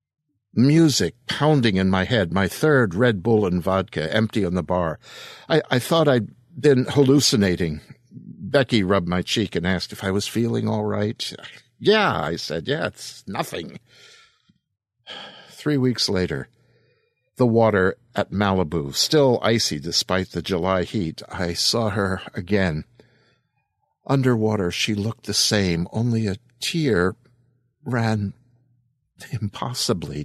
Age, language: 60-79, English